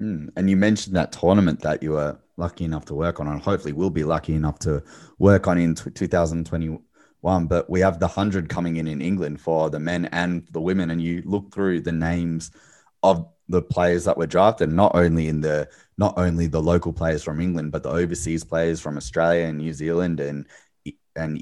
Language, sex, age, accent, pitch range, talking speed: English, male, 20-39, Australian, 80-85 Hz, 205 wpm